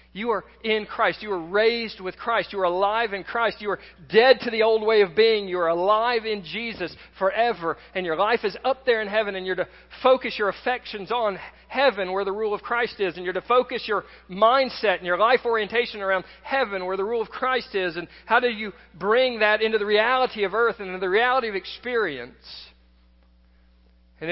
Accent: American